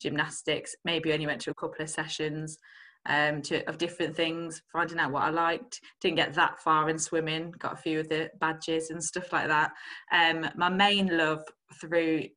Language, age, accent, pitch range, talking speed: English, 20-39, British, 150-175 Hz, 195 wpm